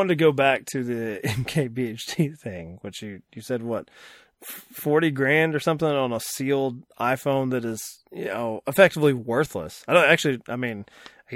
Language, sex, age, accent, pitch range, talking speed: English, male, 20-39, American, 125-155 Hz, 180 wpm